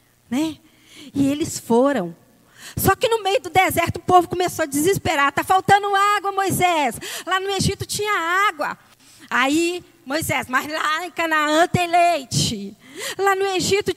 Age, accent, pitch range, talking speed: 20-39, Brazilian, 255-360 Hz, 150 wpm